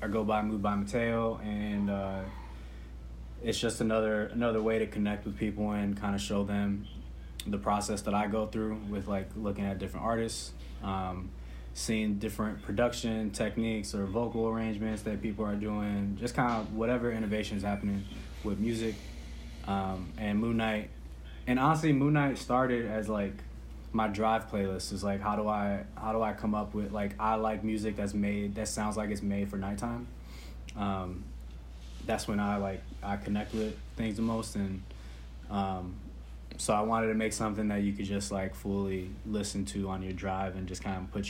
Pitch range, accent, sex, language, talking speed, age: 95-110 Hz, American, male, English, 185 wpm, 20-39